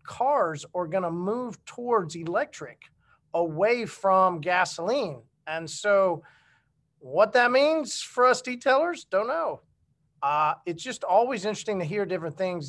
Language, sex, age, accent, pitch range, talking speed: English, male, 40-59, American, 160-210 Hz, 135 wpm